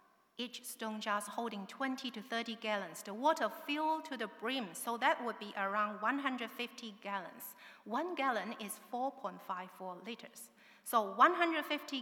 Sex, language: female, English